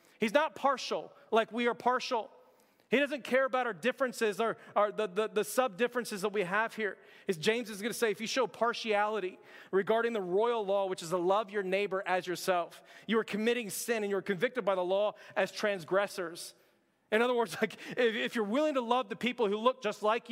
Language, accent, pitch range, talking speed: English, American, 210-250 Hz, 210 wpm